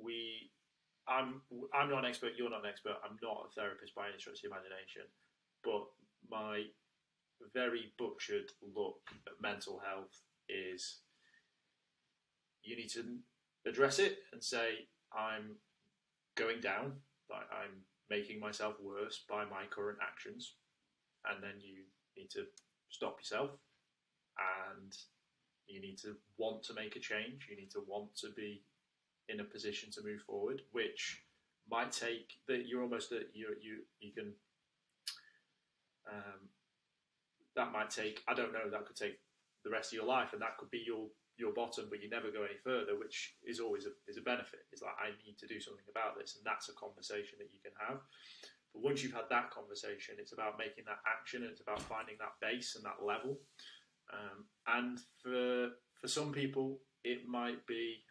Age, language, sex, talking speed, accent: 20-39, English, male, 170 wpm, British